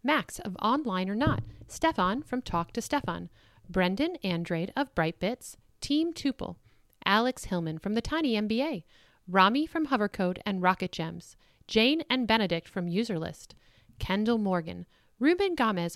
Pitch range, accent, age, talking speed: 175-255 Hz, American, 40-59, 145 wpm